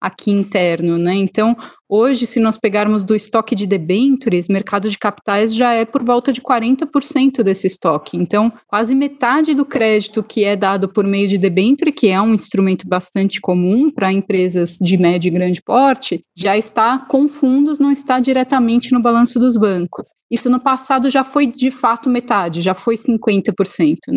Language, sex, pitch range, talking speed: Portuguese, female, 195-245 Hz, 175 wpm